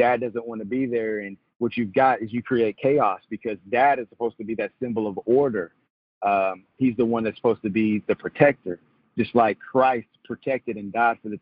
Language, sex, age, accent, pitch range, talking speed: English, male, 40-59, American, 100-120 Hz, 220 wpm